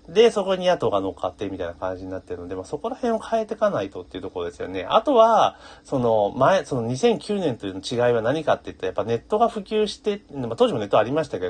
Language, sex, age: Japanese, male, 40-59